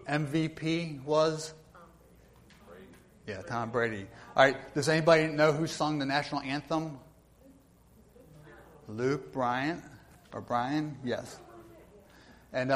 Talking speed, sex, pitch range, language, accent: 100 wpm, male, 120-160 Hz, English, American